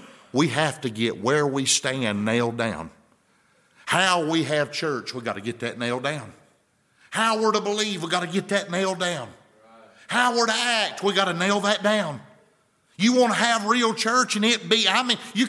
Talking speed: 205 wpm